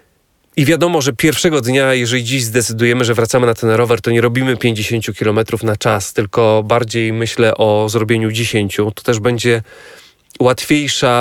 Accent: native